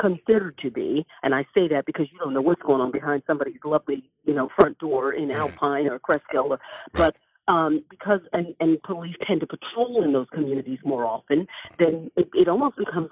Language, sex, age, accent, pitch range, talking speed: English, female, 50-69, American, 155-200 Hz, 200 wpm